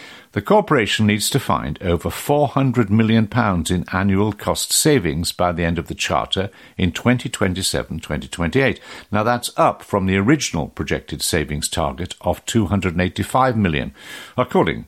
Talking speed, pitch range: 135 wpm, 85-115 Hz